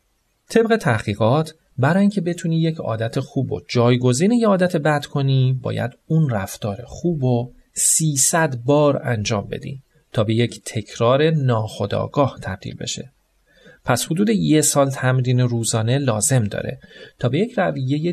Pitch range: 120-175 Hz